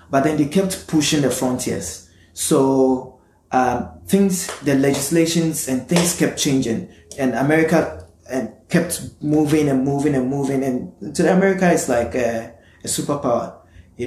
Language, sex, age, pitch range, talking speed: English, male, 30-49, 130-160 Hz, 150 wpm